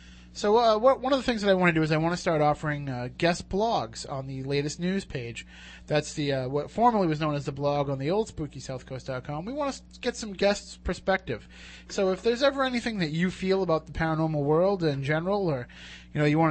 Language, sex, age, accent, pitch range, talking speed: English, male, 30-49, American, 135-185 Hz, 240 wpm